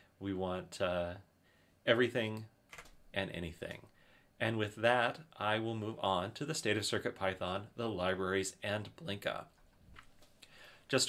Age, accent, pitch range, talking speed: 30-49, American, 100-125 Hz, 130 wpm